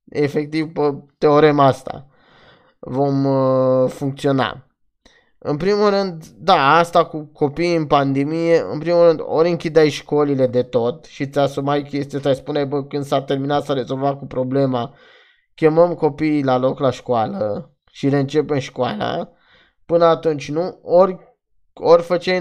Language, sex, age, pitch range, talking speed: Romanian, male, 20-39, 140-165 Hz, 145 wpm